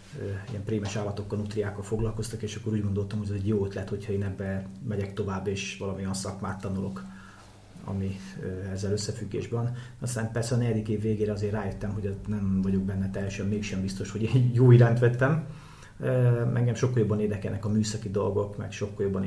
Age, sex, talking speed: 30-49, male, 175 wpm